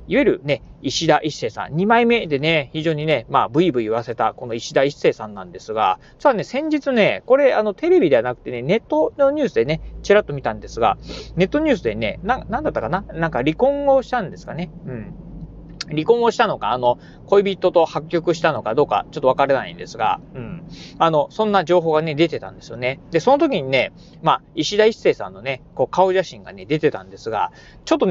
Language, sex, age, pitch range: Japanese, male, 40-59, 140-240 Hz